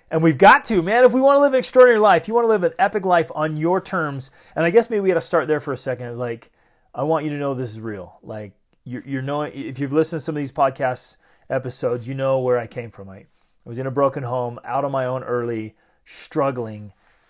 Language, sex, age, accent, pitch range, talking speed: English, male, 30-49, American, 125-160 Hz, 265 wpm